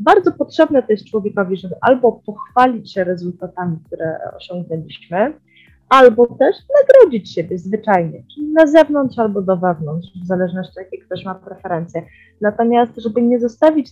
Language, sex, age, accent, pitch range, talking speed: Polish, female, 20-39, native, 180-240 Hz, 145 wpm